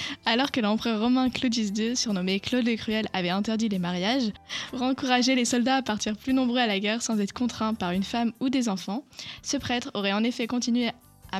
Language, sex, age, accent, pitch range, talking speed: French, female, 10-29, French, 200-245 Hz, 215 wpm